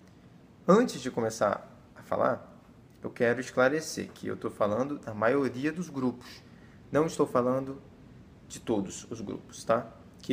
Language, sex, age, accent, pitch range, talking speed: Portuguese, male, 20-39, Brazilian, 125-175 Hz, 145 wpm